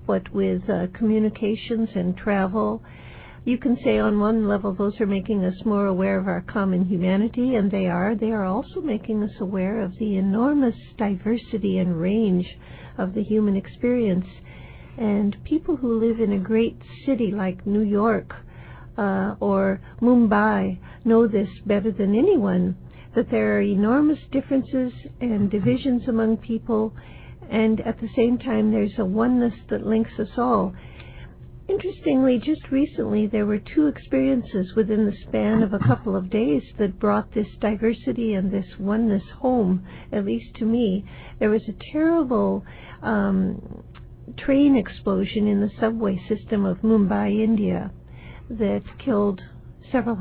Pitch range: 200-230 Hz